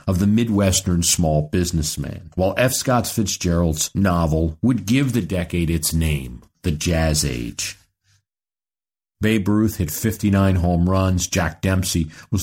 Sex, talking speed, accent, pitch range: male, 135 wpm, American, 85-110 Hz